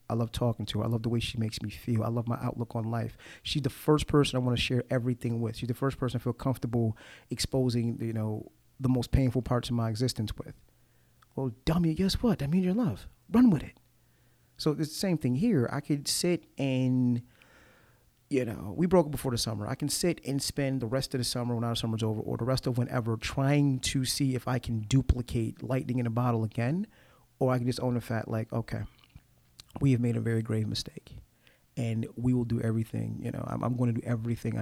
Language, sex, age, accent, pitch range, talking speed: English, male, 30-49, American, 115-140 Hz, 235 wpm